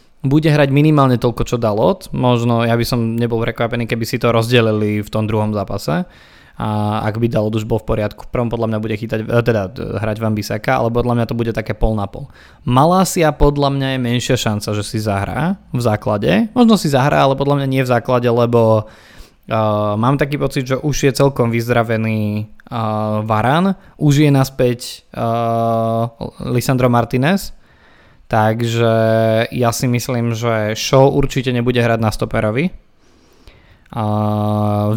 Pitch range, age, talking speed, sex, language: 110-125 Hz, 20-39, 165 wpm, male, Slovak